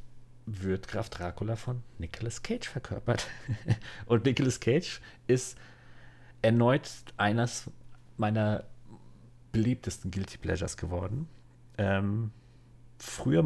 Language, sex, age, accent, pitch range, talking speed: German, male, 40-59, German, 95-120 Hz, 90 wpm